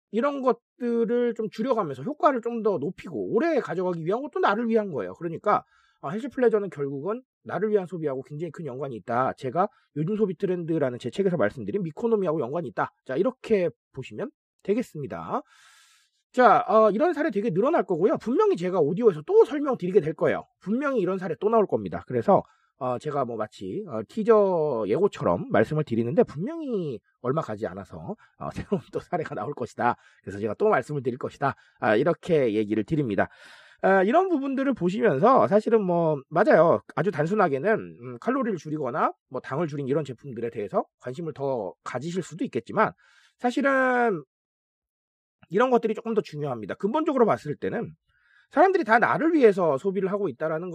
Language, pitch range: Korean, 155-245 Hz